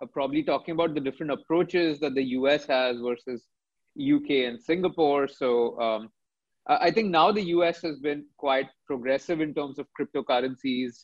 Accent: Indian